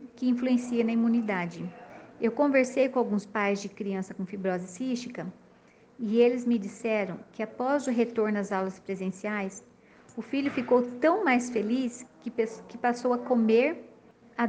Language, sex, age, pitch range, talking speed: Portuguese, female, 50-69, 210-245 Hz, 155 wpm